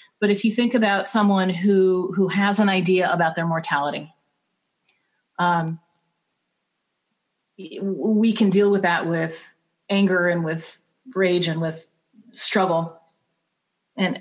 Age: 40-59